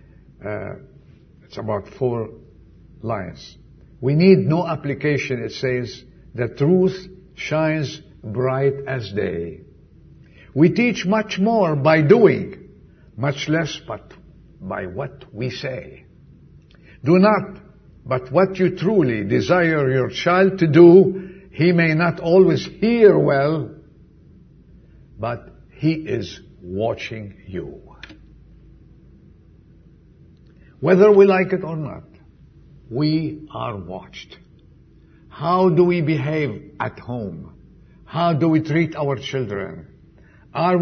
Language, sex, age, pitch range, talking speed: English, male, 60-79, 130-185 Hz, 110 wpm